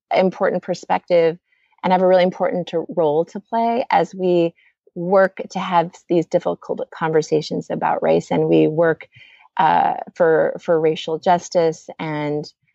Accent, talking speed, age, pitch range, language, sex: American, 140 wpm, 30-49, 160-195 Hz, English, female